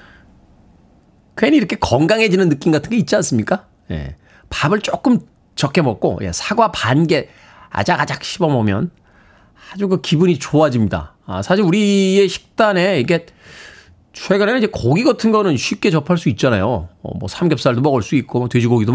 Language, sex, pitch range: Korean, male, 130-190 Hz